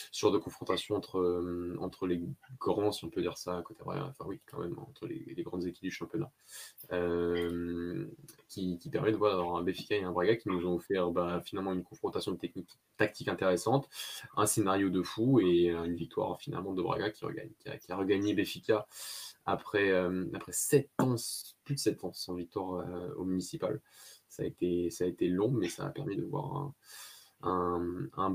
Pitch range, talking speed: 90-100 Hz, 210 wpm